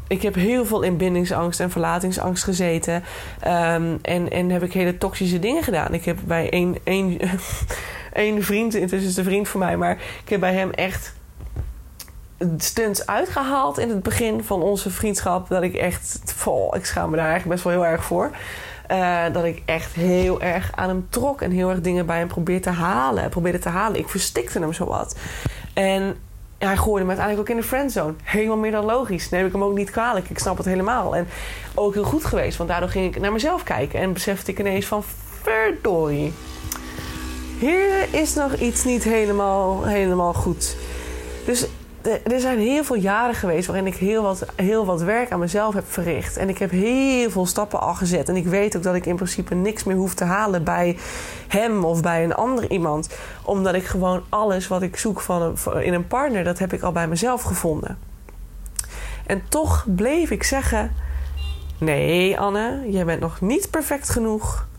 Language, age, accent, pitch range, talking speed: Dutch, 20-39, Dutch, 175-215 Hz, 190 wpm